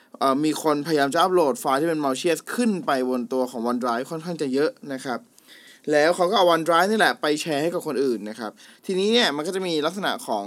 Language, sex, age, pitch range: Thai, male, 20-39, 130-170 Hz